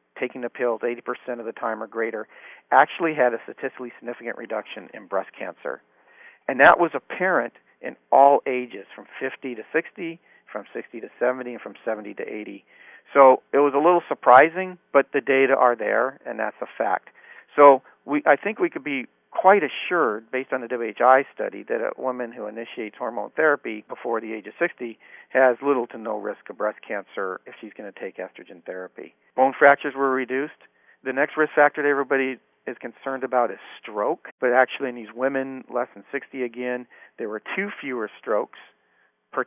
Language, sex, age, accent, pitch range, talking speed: English, male, 50-69, American, 115-140 Hz, 190 wpm